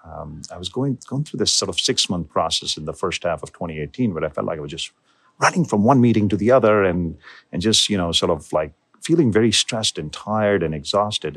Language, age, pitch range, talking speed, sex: English, 40-59, 85-105 Hz, 245 wpm, male